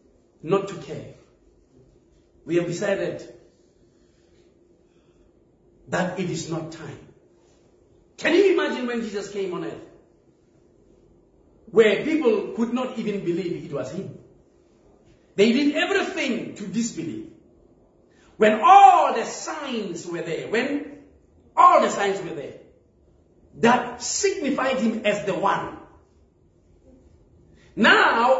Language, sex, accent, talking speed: English, male, South African, 110 wpm